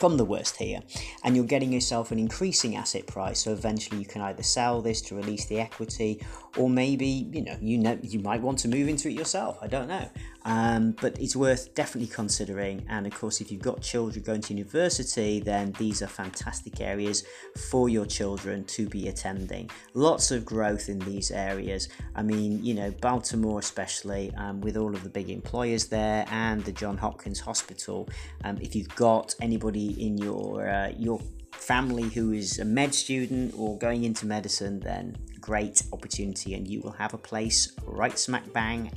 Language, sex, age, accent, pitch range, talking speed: English, male, 30-49, British, 105-125 Hz, 190 wpm